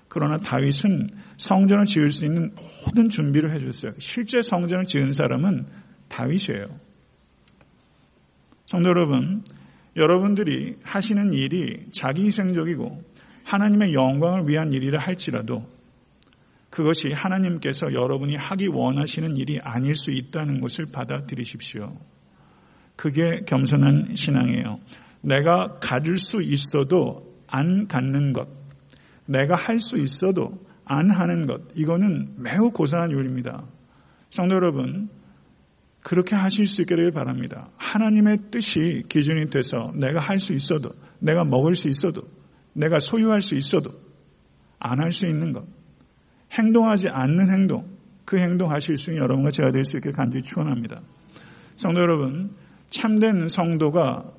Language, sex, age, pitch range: Korean, male, 50-69, 140-190 Hz